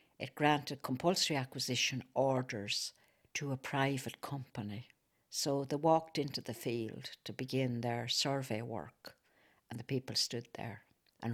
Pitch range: 115-140 Hz